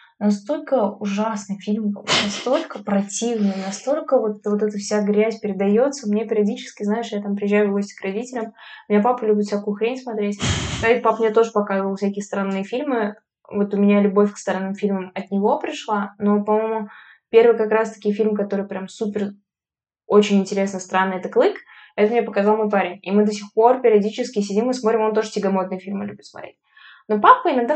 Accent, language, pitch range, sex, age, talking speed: native, Russian, 205-255 Hz, female, 10-29, 180 wpm